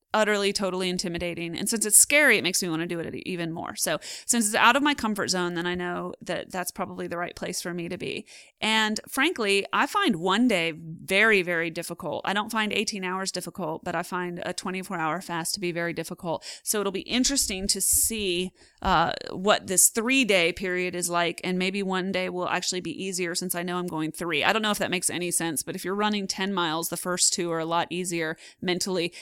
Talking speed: 230 wpm